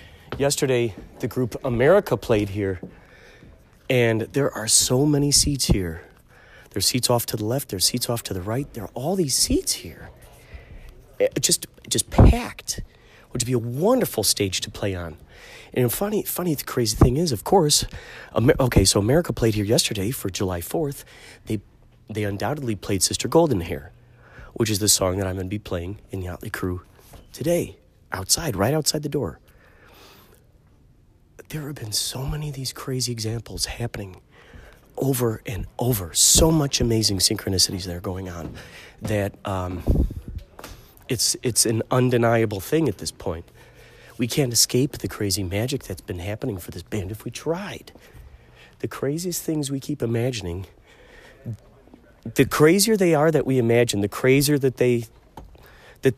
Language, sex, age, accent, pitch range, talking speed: English, male, 30-49, American, 100-135 Hz, 165 wpm